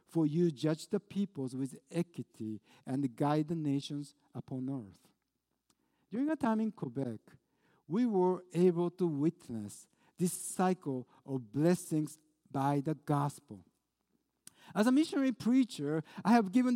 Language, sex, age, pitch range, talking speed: English, male, 60-79, 160-220 Hz, 135 wpm